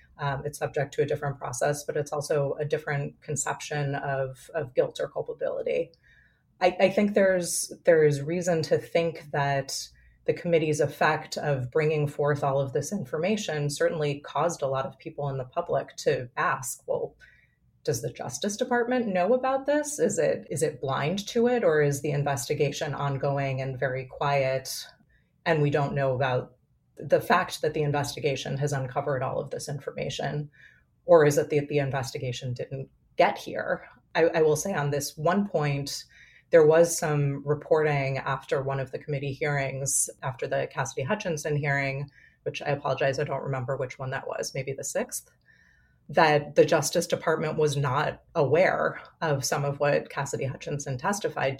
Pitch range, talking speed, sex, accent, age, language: 140-165 Hz, 170 wpm, female, American, 30-49, English